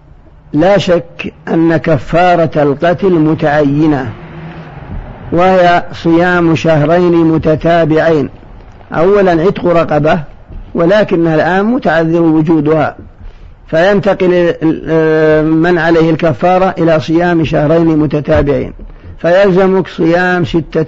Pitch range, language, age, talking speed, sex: 155-175 Hz, Arabic, 50-69, 80 wpm, male